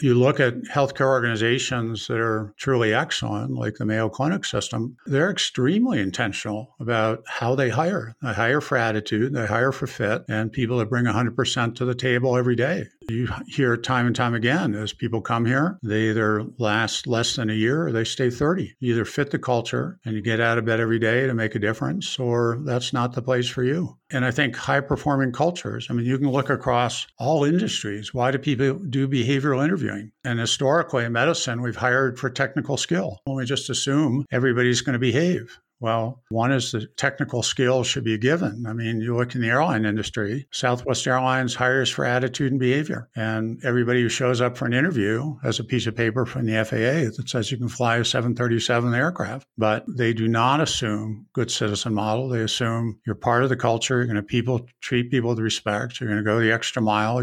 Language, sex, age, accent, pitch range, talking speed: English, male, 50-69, American, 115-135 Hz, 210 wpm